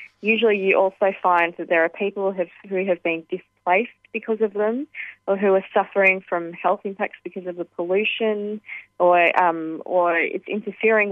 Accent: Australian